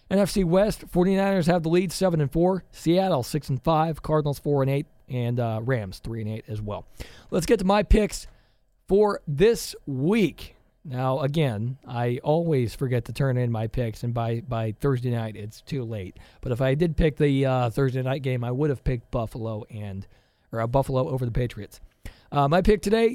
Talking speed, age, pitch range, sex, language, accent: 200 wpm, 40-59, 125-165 Hz, male, English, American